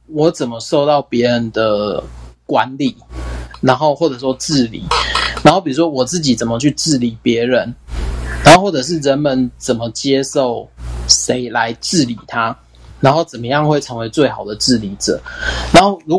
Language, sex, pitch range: Chinese, male, 110-140 Hz